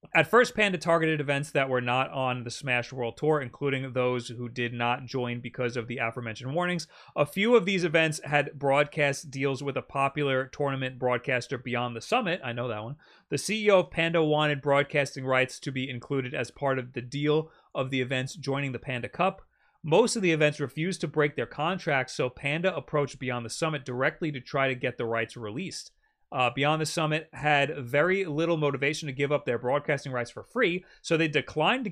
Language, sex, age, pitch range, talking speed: English, male, 30-49, 130-155 Hz, 205 wpm